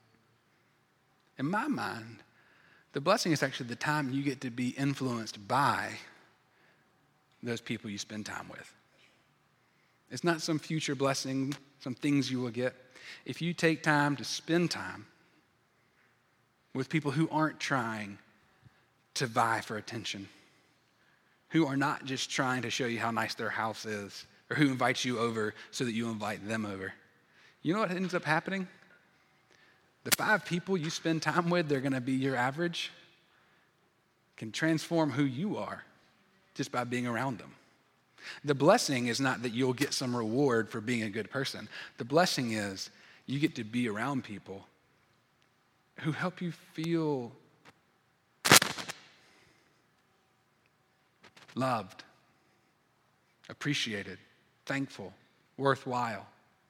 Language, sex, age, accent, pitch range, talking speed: English, male, 30-49, American, 115-155 Hz, 140 wpm